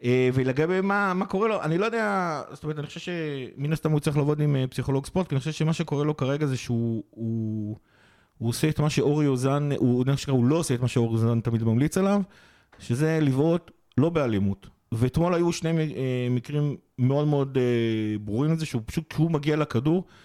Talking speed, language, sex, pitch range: 195 wpm, Hebrew, male, 120-155 Hz